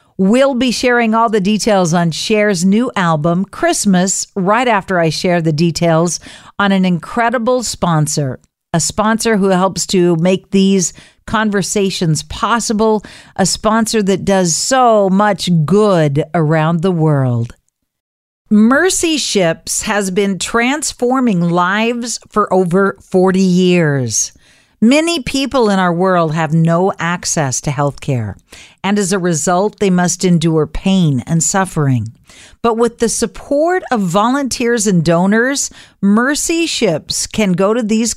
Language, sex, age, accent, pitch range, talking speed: English, female, 50-69, American, 170-230 Hz, 130 wpm